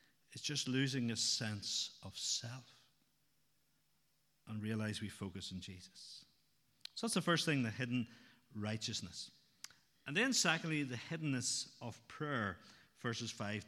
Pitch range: 115-155 Hz